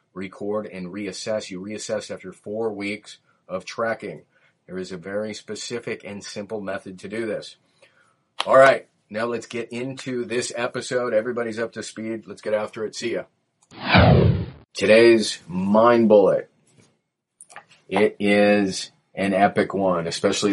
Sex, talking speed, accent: male, 140 wpm, American